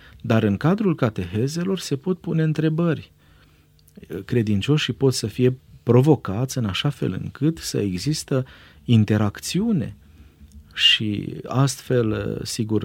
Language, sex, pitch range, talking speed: Romanian, male, 95-135 Hz, 105 wpm